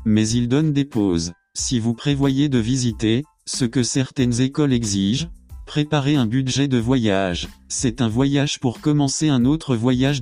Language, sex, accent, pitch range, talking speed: English, male, French, 120-145 Hz, 165 wpm